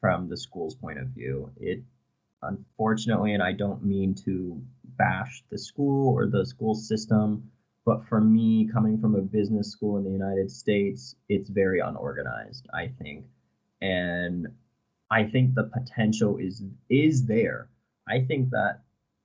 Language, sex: Czech, male